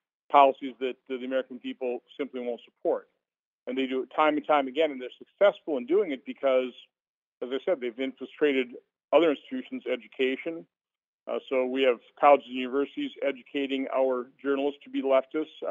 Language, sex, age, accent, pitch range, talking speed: English, male, 40-59, American, 130-175 Hz, 170 wpm